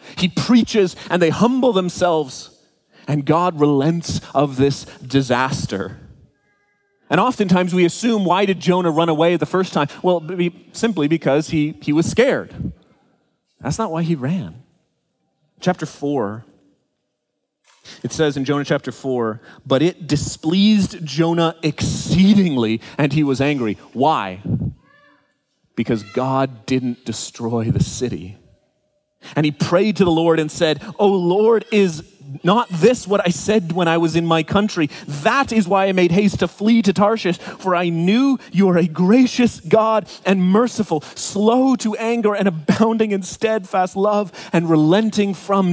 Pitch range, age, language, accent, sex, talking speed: 150-210 Hz, 30-49, English, American, male, 150 wpm